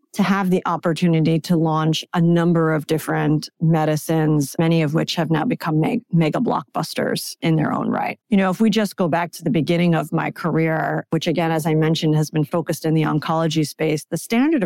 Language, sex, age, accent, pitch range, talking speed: English, female, 40-59, American, 155-180 Hz, 205 wpm